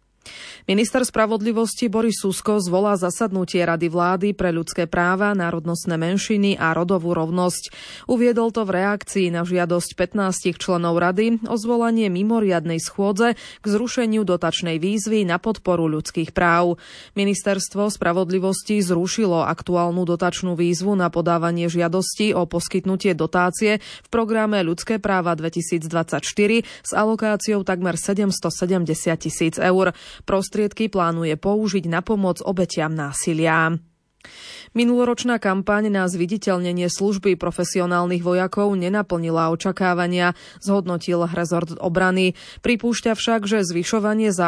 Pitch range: 175-205 Hz